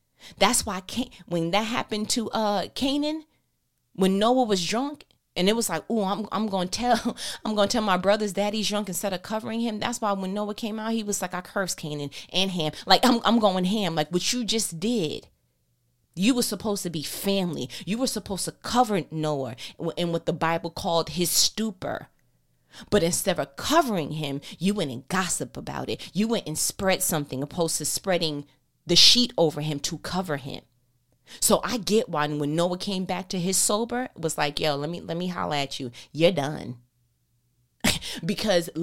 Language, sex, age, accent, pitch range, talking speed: English, female, 30-49, American, 150-210 Hz, 195 wpm